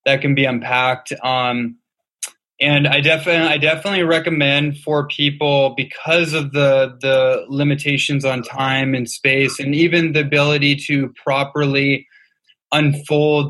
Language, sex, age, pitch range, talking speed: English, male, 20-39, 135-150 Hz, 130 wpm